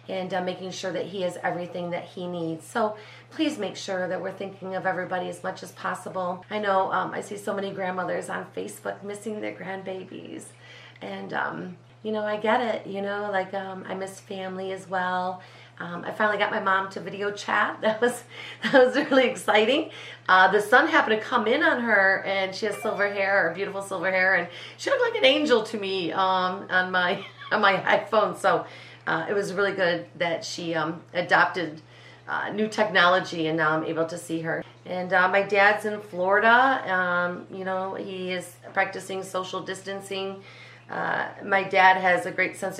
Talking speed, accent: 200 wpm, American